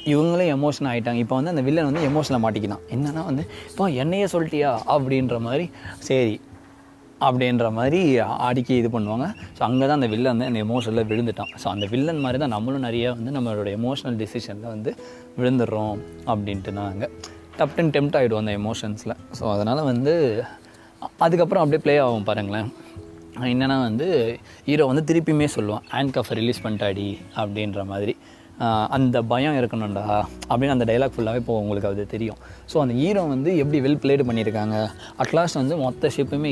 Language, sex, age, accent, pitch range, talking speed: Tamil, male, 20-39, native, 110-135 Hz, 160 wpm